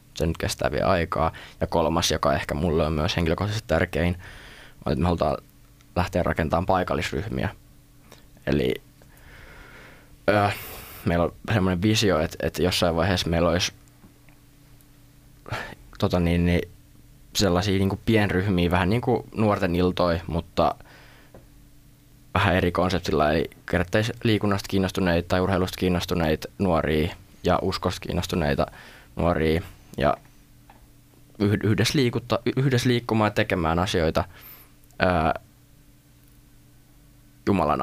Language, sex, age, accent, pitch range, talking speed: Finnish, male, 20-39, native, 85-105 Hz, 110 wpm